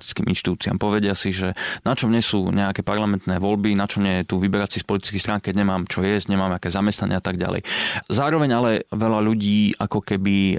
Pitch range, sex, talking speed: 100-120 Hz, male, 205 wpm